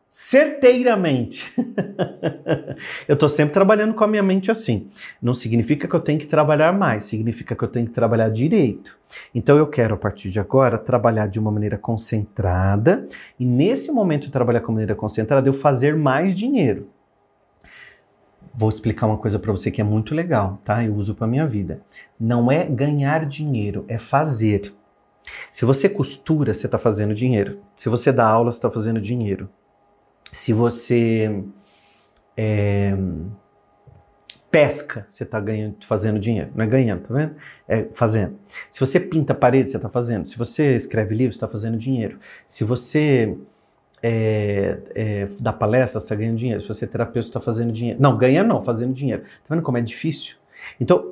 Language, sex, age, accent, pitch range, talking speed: Portuguese, male, 30-49, Brazilian, 110-150 Hz, 170 wpm